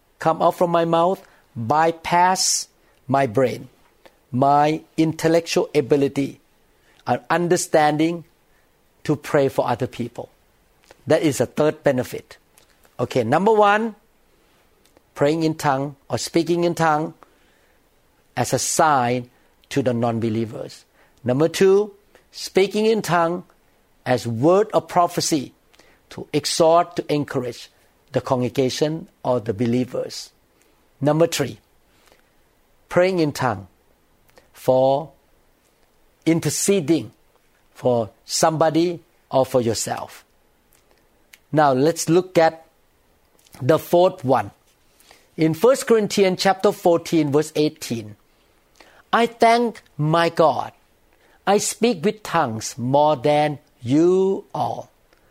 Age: 50-69